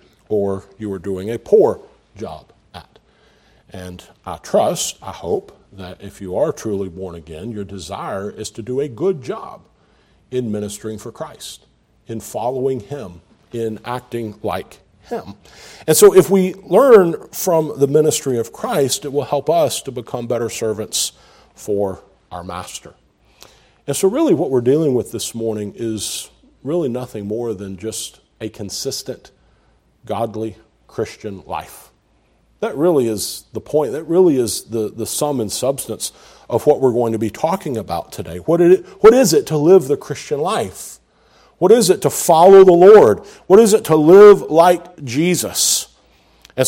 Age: 50-69